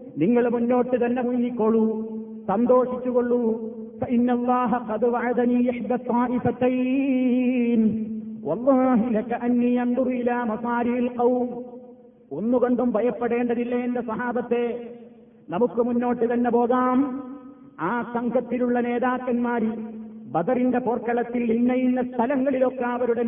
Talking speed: 55 wpm